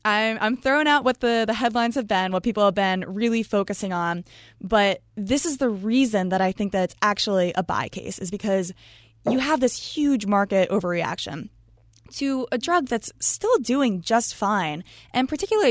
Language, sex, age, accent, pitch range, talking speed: English, female, 20-39, American, 180-235 Hz, 185 wpm